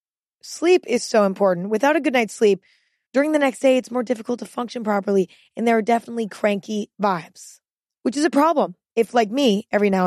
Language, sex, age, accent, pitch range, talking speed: English, female, 20-39, American, 195-235 Hz, 205 wpm